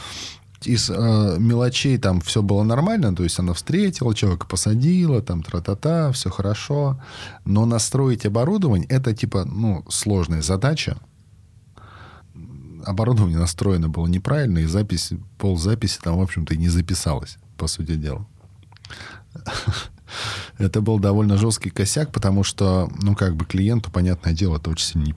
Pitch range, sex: 90-115 Hz, male